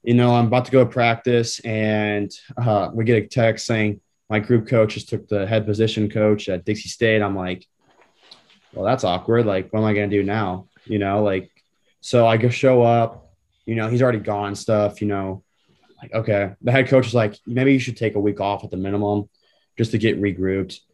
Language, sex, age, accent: English, male, 20-39, American